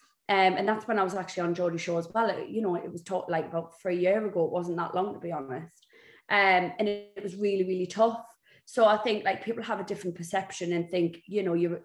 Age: 20-39